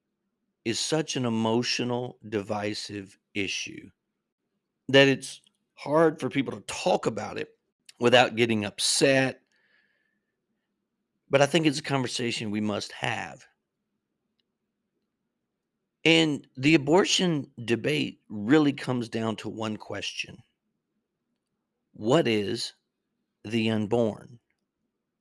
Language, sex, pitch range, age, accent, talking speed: English, male, 115-155 Hz, 50-69, American, 100 wpm